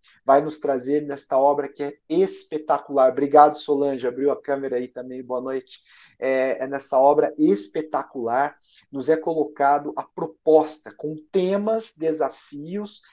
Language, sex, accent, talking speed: Portuguese, male, Brazilian, 135 wpm